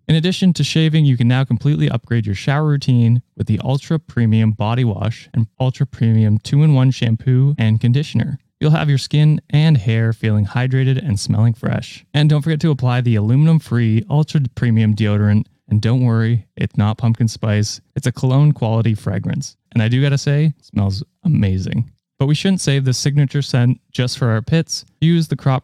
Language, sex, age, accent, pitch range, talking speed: English, male, 20-39, American, 115-150 Hz, 190 wpm